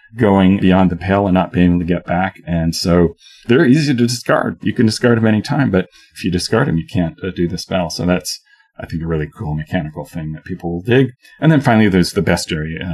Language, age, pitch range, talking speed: English, 40-59, 85-110 Hz, 245 wpm